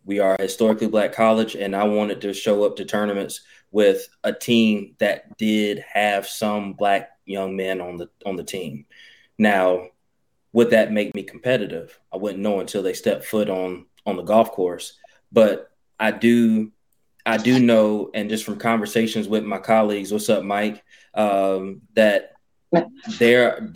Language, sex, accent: English, male, American